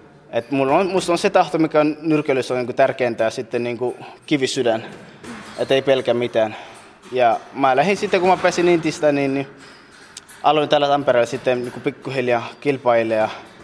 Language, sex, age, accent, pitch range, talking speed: Finnish, male, 20-39, native, 115-145 Hz, 165 wpm